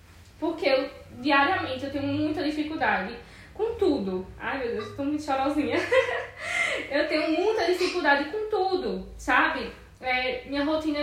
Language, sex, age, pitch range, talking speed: Portuguese, female, 10-29, 260-325 Hz, 140 wpm